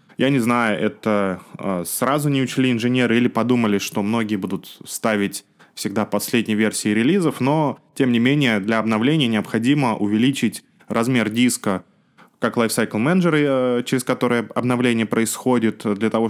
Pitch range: 105-125 Hz